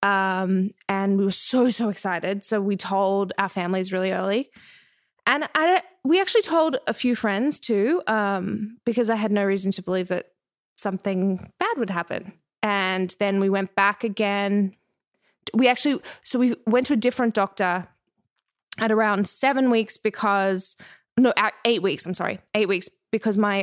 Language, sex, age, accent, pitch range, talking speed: English, female, 20-39, Australian, 190-230 Hz, 165 wpm